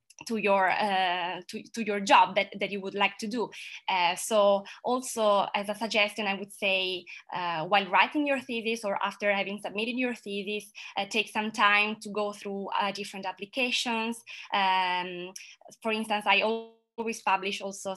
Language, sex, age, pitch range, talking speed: English, female, 20-39, 195-225 Hz, 170 wpm